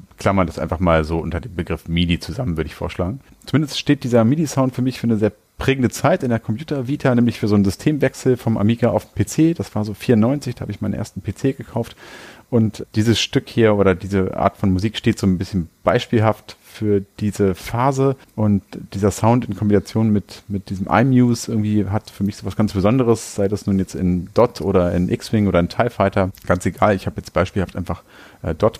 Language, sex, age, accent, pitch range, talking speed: German, male, 40-59, German, 95-120 Hz, 215 wpm